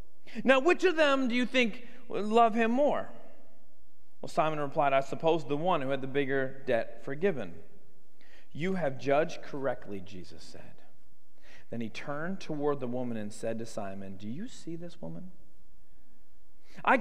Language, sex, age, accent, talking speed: English, male, 40-59, American, 160 wpm